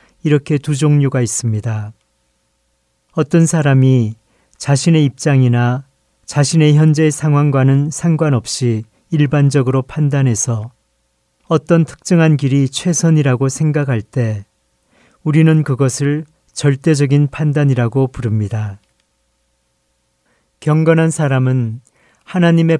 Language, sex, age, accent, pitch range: Korean, male, 40-59, native, 120-150 Hz